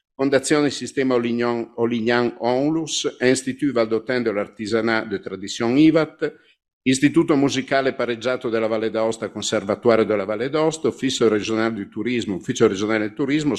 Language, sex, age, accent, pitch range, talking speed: Italian, male, 50-69, native, 110-135 Hz, 115 wpm